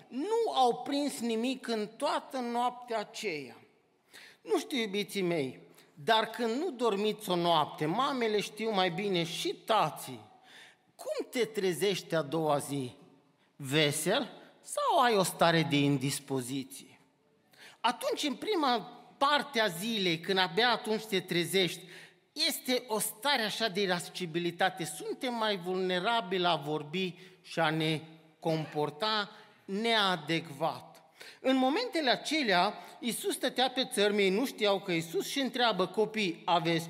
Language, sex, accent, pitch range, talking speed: Romanian, male, native, 175-255 Hz, 130 wpm